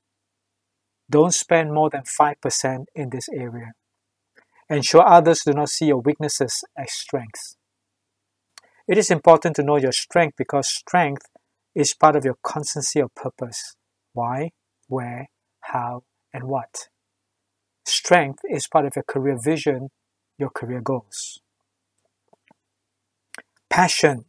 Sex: male